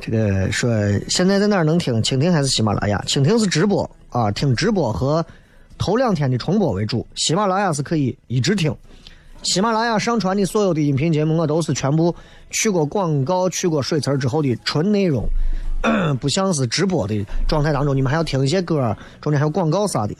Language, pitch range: Chinese, 115-185 Hz